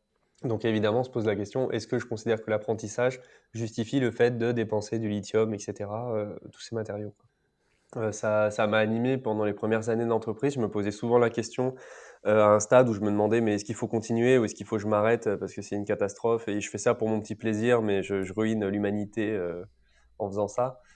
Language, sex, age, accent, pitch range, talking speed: French, male, 20-39, French, 105-120 Hz, 240 wpm